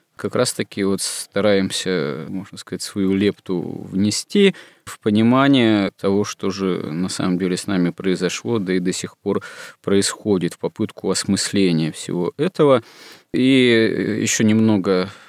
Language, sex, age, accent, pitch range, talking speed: Russian, male, 20-39, native, 95-110 Hz, 135 wpm